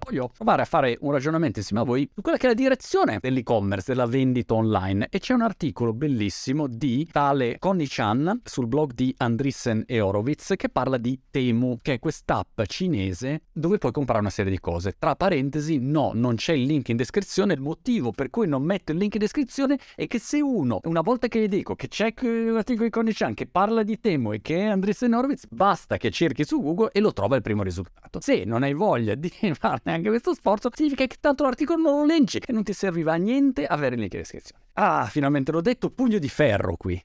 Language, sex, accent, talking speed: Italian, male, native, 225 wpm